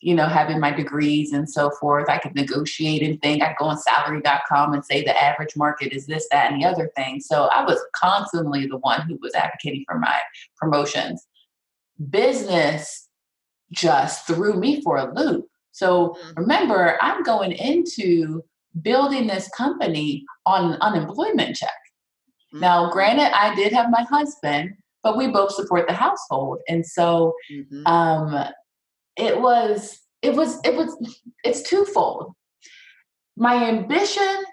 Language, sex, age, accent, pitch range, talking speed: English, female, 30-49, American, 155-245 Hz, 150 wpm